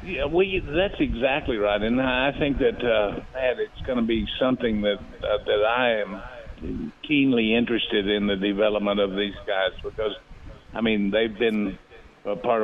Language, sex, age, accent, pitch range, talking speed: English, male, 50-69, American, 95-110 Hz, 170 wpm